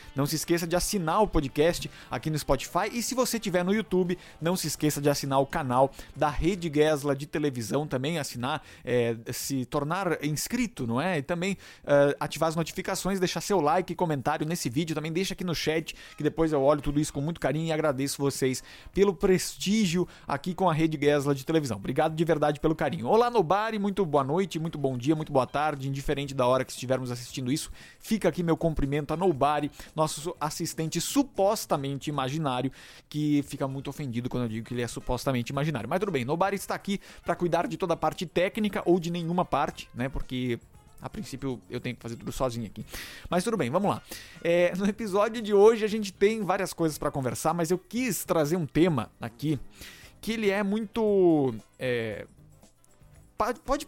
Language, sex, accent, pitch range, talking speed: Portuguese, male, Brazilian, 140-185 Hz, 195 wpm